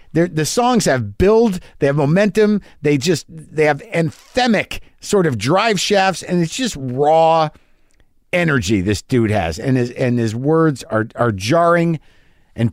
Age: 50-69